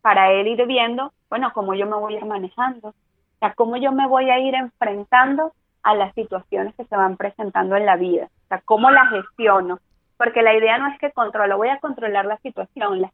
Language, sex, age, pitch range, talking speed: Spanish, female, 30-49, 195-245 Hz, 225 wpm